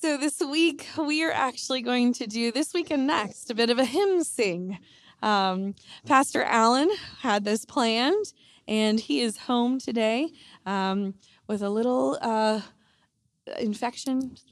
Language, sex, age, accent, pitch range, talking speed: English, female, 20-39, American, 195-265 Hz, 150 wpm